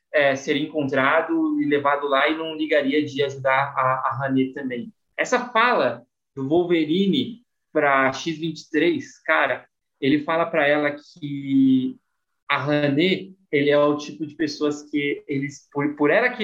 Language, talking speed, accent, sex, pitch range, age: Portuguese, 145 wpm, Brazilian, male, 145-195 Hz, 20-39